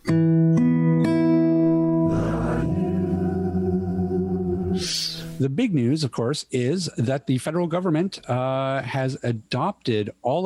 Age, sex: 50-69, male